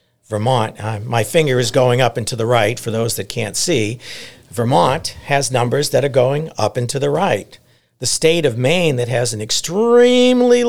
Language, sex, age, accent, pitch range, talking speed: English, male, 50-69, American, 120-165 Hz, 195 wpm